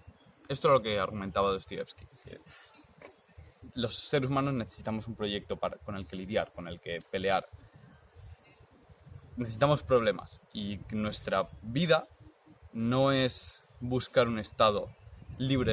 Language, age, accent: Spanish, 20-39, Spanish